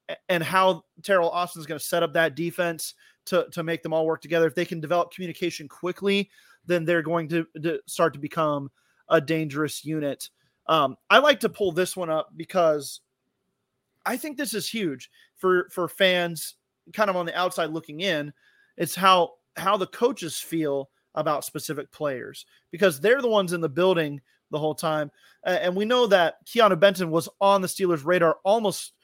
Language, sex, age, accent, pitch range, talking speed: English, male, 30-49, American, 155-185 Hz, 190 wpm